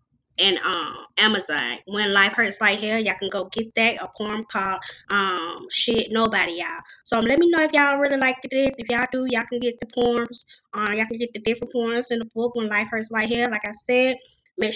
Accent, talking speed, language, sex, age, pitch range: American, 230 wpm, English, female, 20-39, 210-240 Hz